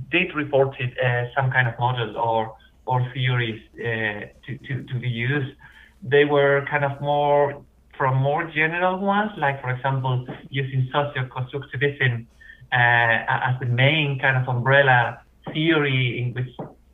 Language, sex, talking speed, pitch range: English, male, 140 wpm, 125-150 Hz